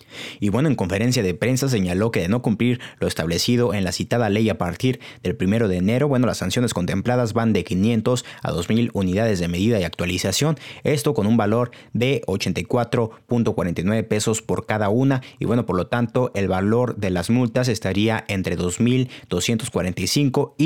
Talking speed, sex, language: 175 wpm, male, Spanish